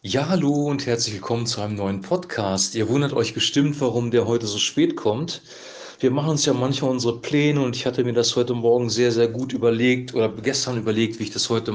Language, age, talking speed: German, 40-59, 225 wpm